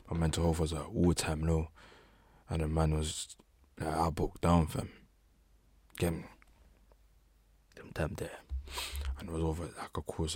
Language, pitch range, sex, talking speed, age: English, 75-85 Hz, male, 160 wpm, 20-39